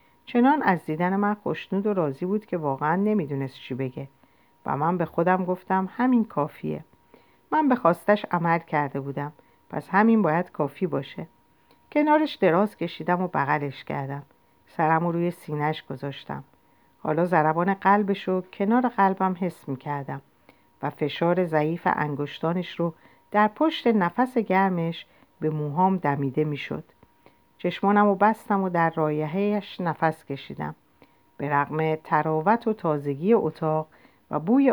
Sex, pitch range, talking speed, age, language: female, 150-205 Hz, 135 wpm, 50-69, Persian